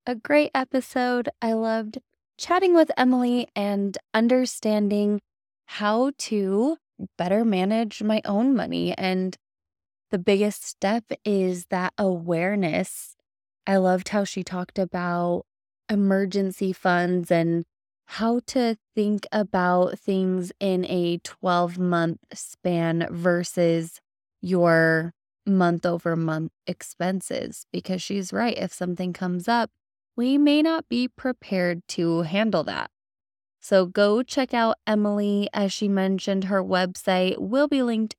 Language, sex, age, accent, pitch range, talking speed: English, female, 20-39, American, 175-215 Hz, 120 wpm